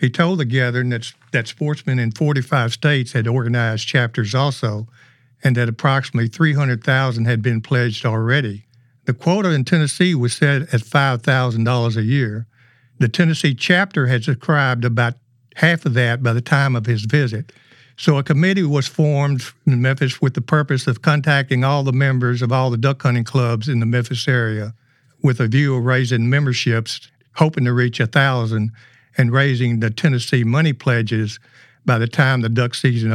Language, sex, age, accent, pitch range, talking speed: English, male, 60-79, American, 120-140 Hz, 170 wpm